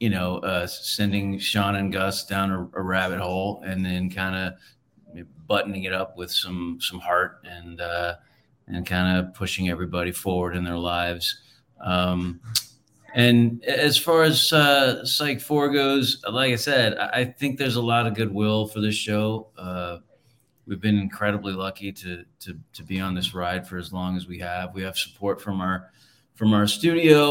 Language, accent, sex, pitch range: English, American, male, 90-125 Hz